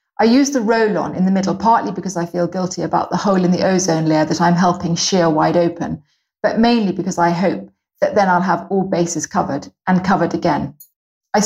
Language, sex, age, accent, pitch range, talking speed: English, female, 30-49, British, 175-235 Hz, 215 wpm